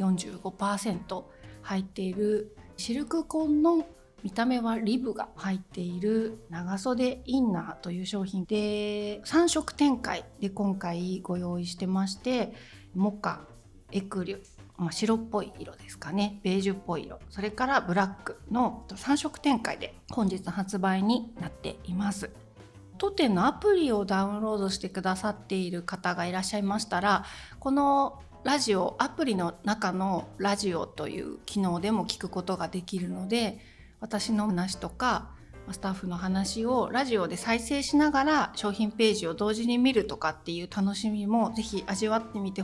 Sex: female